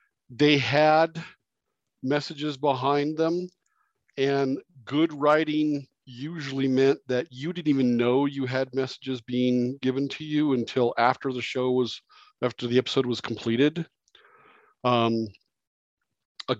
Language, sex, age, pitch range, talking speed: English, male, 50-69, 115-135 Hz, 125 wpm